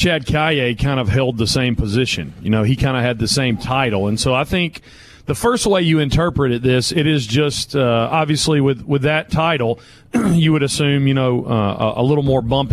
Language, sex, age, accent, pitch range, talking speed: English, male, 40-59, American, 120-155 Hz, 220 wpm